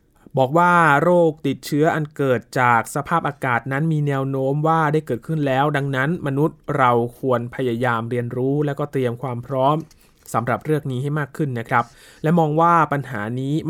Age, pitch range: 20-39, 120-150 Hz